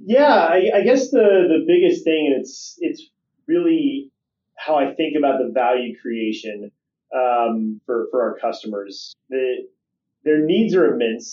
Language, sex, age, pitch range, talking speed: English, male, 30-49, 110-135 Hz, 155 wpm